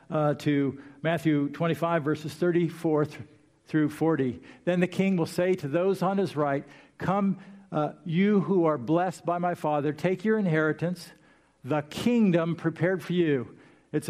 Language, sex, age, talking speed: English, male, 50-69, 155 wpm